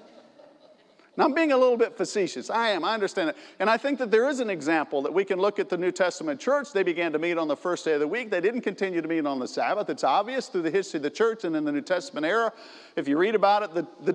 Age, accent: 50-69, American